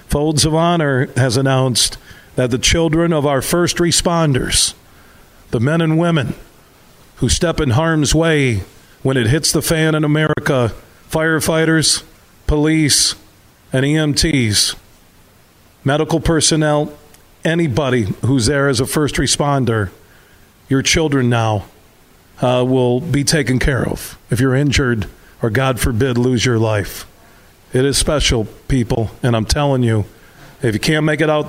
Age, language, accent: 40-59, English, American